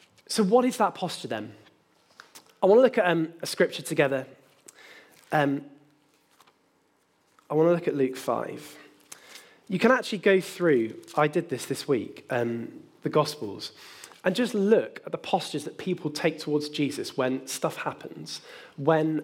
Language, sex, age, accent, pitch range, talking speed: English, male, 10-29, British, 135-180 Hz, 160 wpm